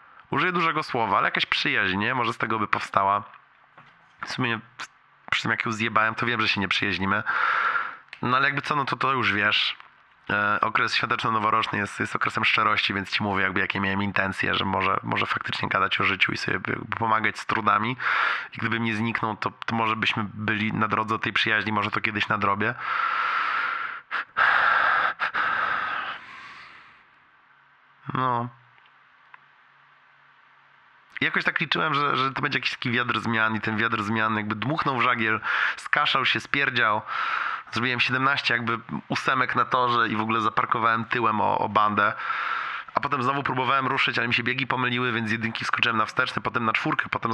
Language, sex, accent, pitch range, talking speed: Polish, male, native, 110-125 Hz, 170 wpm